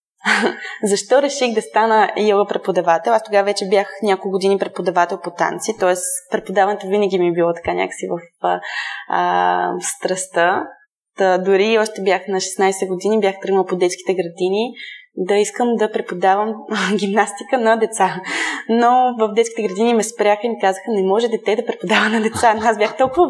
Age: 20-39